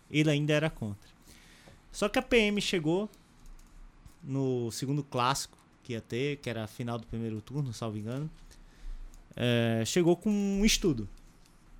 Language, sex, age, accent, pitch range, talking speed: Portuguese, male, 20-39, Brazilian, 120-175 Hz, 145 wpm